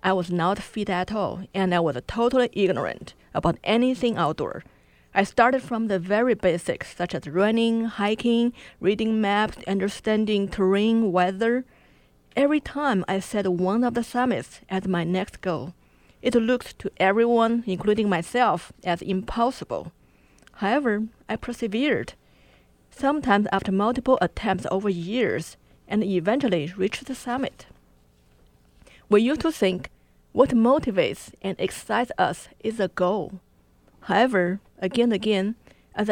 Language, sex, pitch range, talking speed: English, female, 180-235 Hz, 135 wpm